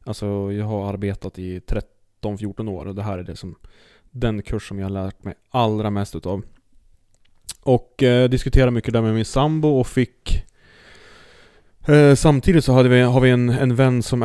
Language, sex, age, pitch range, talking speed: Swedish, male, 30-49, 100-125 Hz, 185 wpm